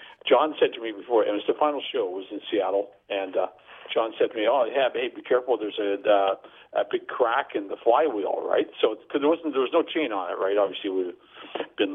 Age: 50-69